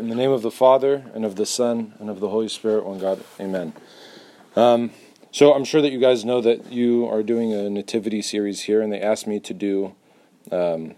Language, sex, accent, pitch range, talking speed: English, male, American, 100-120 Hz, 225 wpm